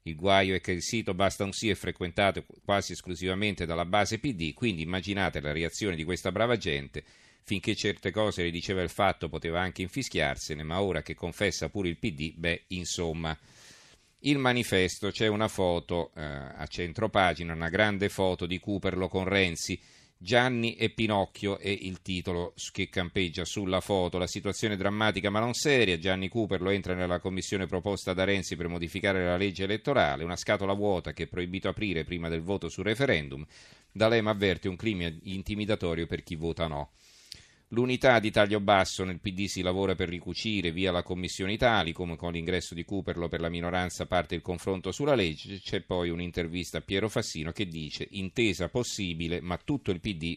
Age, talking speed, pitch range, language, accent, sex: 40-59, 180 wpm, 85-105 Hz, Italian, native, male